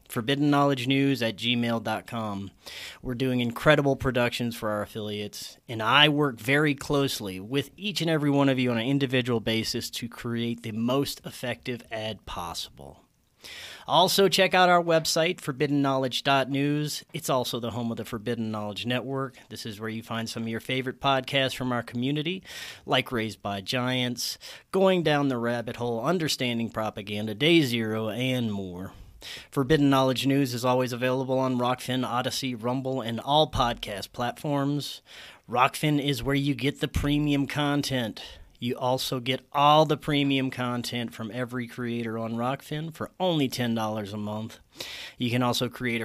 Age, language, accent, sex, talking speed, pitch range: 30-49, English, American, male, 155 wpm, 115-145 Hz